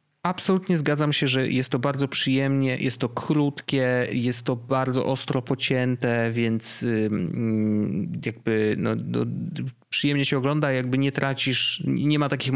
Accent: native